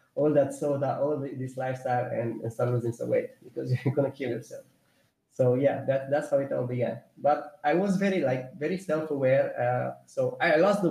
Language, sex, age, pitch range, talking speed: English, male, 20-39, 130-165 Hz, 195 wpm